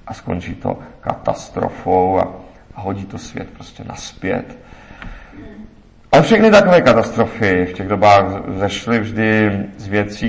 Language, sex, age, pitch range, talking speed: Czech, male, 40-59, 100-125 Hz, 130 wpm